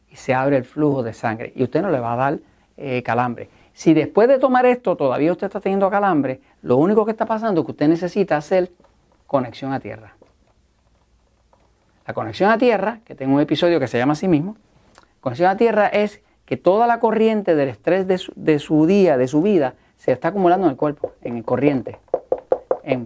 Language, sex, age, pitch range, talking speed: Spanish, male, 40-59, 140-200 Hz, 205 wpm